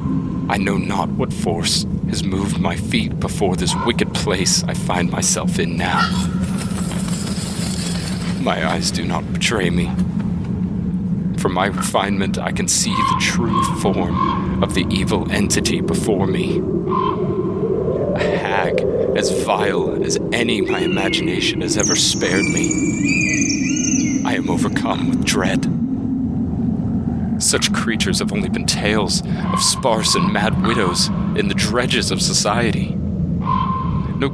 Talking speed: 130 wpm